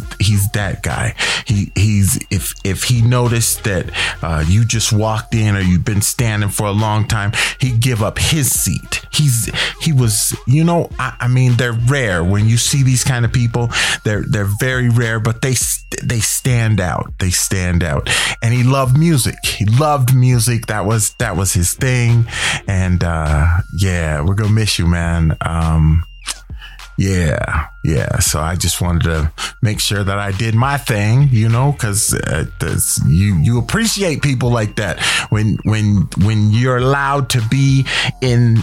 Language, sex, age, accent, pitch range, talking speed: English, male, 30-49, American, 100-130 Hz, 170 wpm